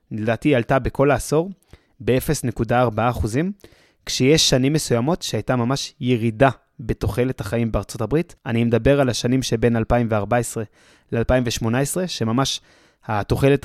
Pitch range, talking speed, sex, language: 120-145 Hz, 115 wpm, male, Hebrew